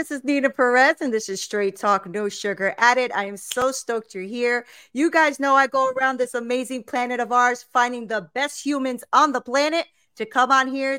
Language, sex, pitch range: English, female, 235-285 Hz